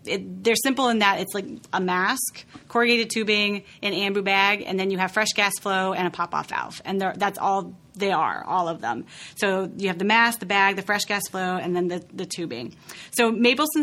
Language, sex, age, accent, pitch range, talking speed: English, female, 30-49, American, 180-215 Hz, 215 wpm